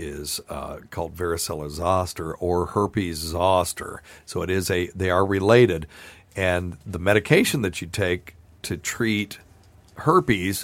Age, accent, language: 60-79, American, English